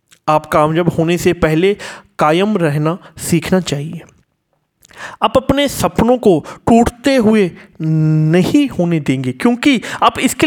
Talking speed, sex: 125 wpm, male